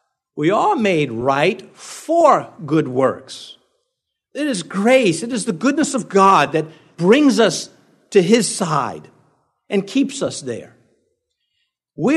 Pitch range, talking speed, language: 145-235 Hz, 135 wpm, English